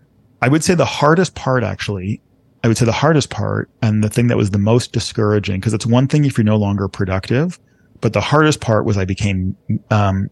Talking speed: 220 wpm